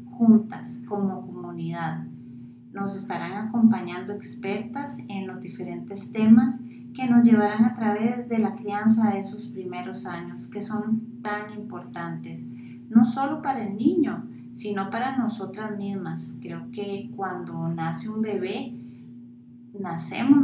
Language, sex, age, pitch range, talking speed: Spanish, female, 30-49, 195-235 Hz, 125 wpm